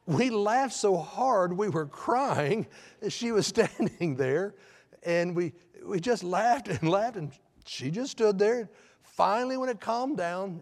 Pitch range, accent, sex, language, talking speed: 145-240 Hz, American, male, English, 165 wpm